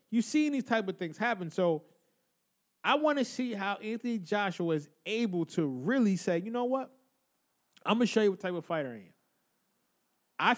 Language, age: English, 20-39